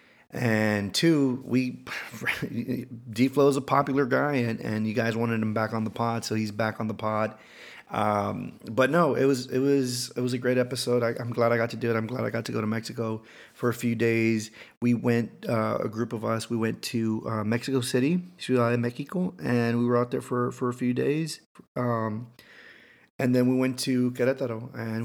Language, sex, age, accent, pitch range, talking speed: English, male, 30-49, American, 115-130 Hz, 215 wpm